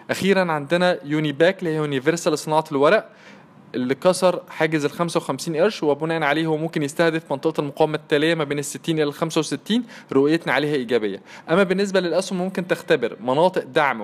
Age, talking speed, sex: 20-39, 165 wpm, male